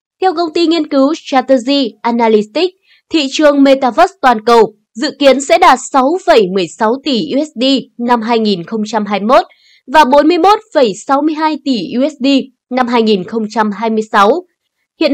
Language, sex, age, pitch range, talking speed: Vietnamese, female, 20-39, 230-320 Hz, 110 wpm